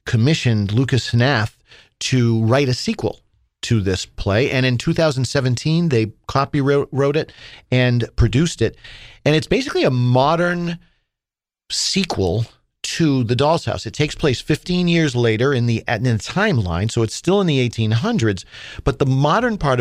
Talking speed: 150 wpm